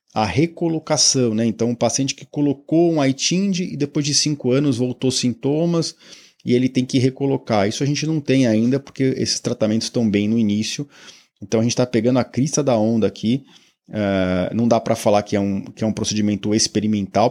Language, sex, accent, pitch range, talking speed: Portuguese, male, Brazilian, 100-125 Hz, 190 wpm